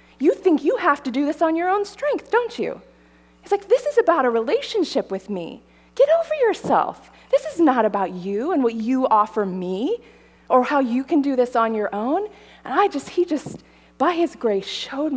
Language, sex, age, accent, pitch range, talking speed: English, female, 20-39, American, 185-285 Hz, 210 wpm